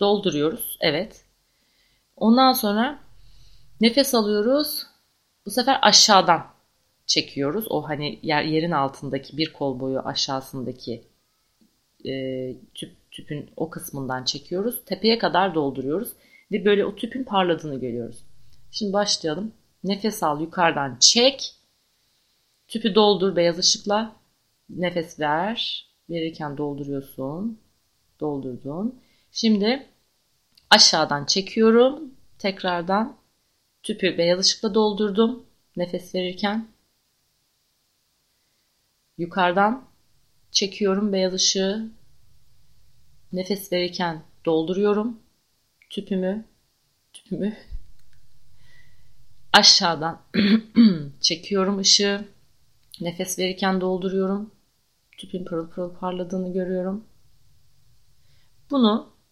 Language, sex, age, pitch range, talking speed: Turkish, female, 30-49, 150-210 Hz, 80 wpm